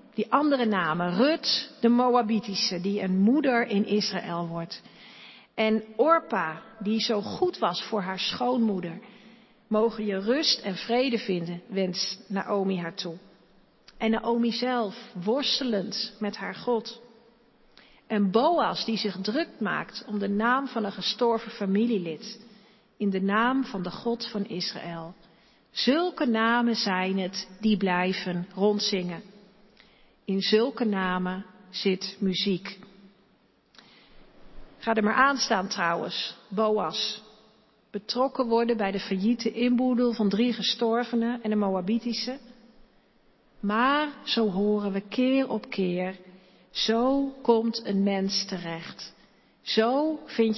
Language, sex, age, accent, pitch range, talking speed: Dutch, female, 50-69, Dutch, 195-235 Hz, 125 wpm